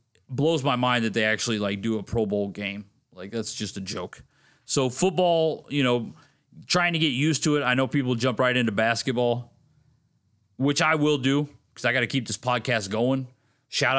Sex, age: male, 30-49